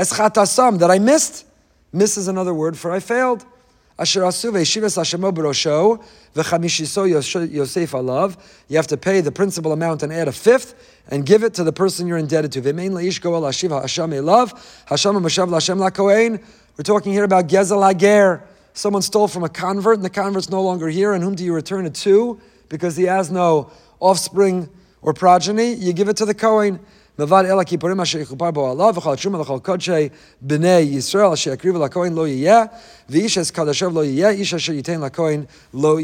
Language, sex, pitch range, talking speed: English, male, 160-205 Hz, 135 wpm